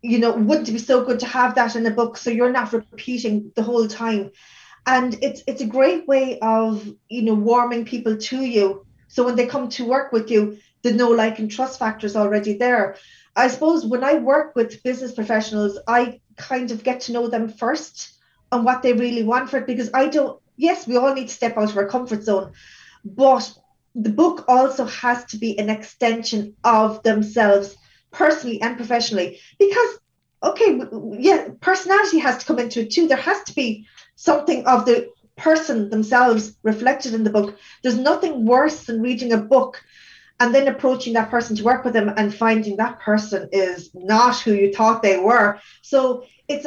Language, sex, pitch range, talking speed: English, female, 220-260 Hz, 195 wpm